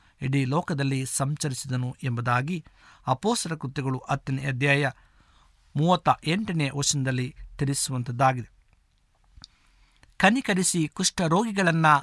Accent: native